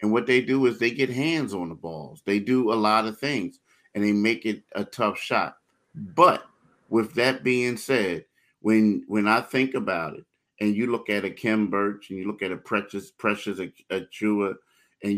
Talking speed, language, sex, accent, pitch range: 200 wpm, English, male, American, 100-120 Hz